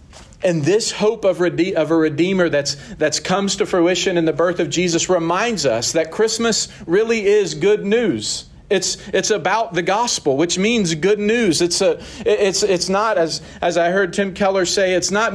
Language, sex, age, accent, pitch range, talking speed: English, male, 40-59, American, 140-185 Hz, 190 wpm